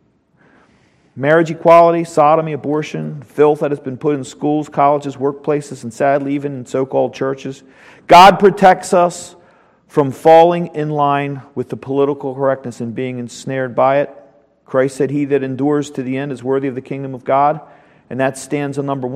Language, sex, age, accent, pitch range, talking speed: English, male, 40-59, American, 125-160 Hz, 170 wpm